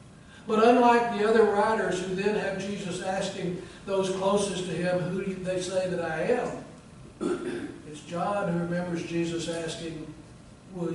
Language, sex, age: English, male, 60-79